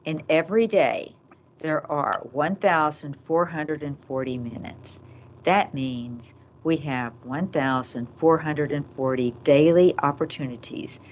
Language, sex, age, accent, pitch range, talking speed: English, female, 60-79, American, 135-210 Hz, 75 wpm